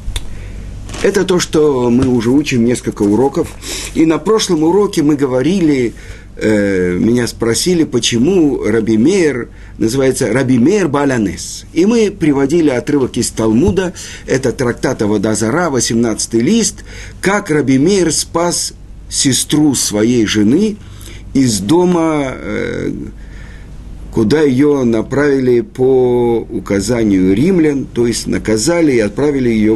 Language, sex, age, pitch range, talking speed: Russian, male, 50-69, 105-155 Hz, 110 wpm